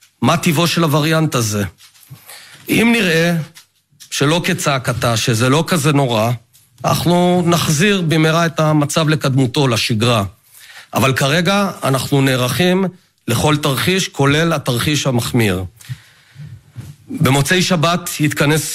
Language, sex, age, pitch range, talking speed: Hebrew, male, 40-59, 125-165 Hz, 100 wpm